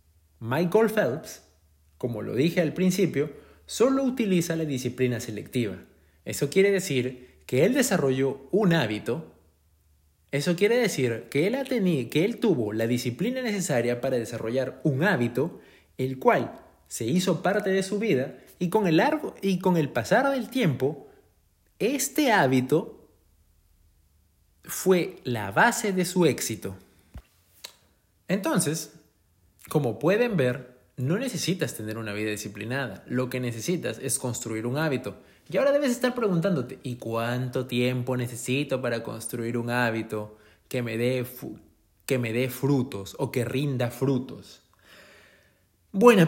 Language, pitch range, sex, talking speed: Spanish, 110-180 Hz, male, 125 wpm